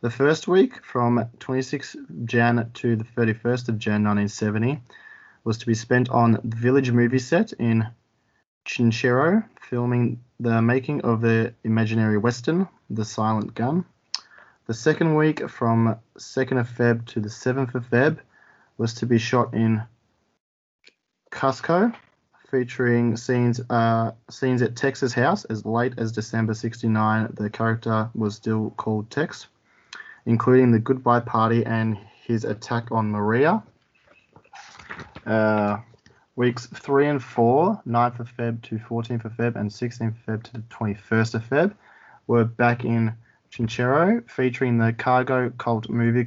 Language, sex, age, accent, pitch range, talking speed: English, male, 20-39, Australian, 110-125 Hz, 140 wpm